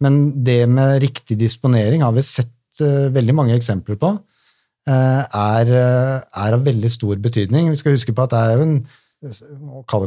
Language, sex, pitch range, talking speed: English, male, 110-140 Hz, 195 wpm